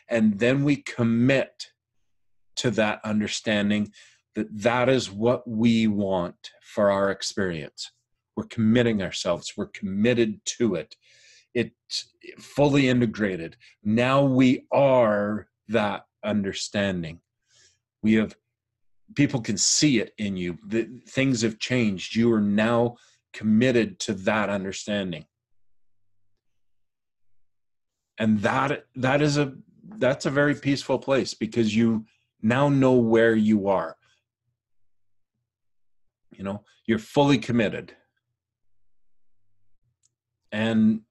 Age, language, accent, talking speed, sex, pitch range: 40-59, English, American, 110 wpm, male, 100-120 Hz